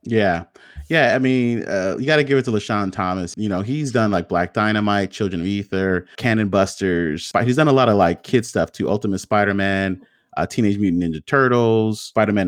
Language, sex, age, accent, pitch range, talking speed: English, male, 30-49, American, 95-120 Hz, 200 wpm